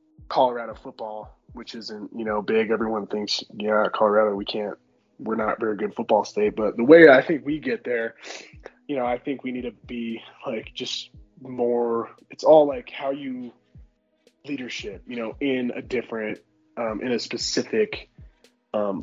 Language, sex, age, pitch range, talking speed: English, male, 20-39, 110-130 Hz, 170 wpm